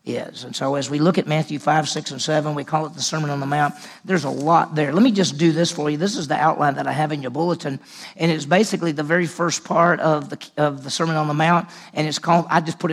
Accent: American